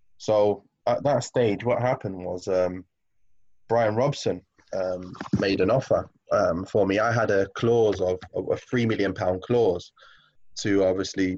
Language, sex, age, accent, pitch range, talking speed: English, male, 20-39, British, 95-110 Hz, 160 wpm